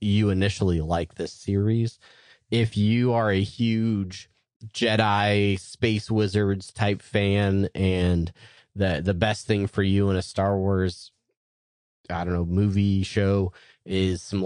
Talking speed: 135 wpm